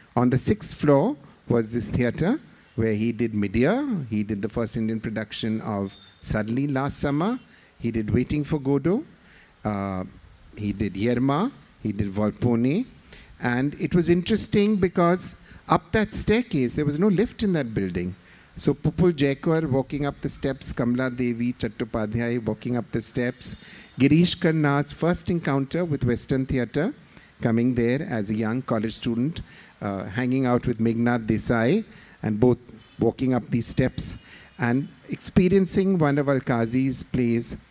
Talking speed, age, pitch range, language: 150 wpm, 50-69, 115-145 Hz, English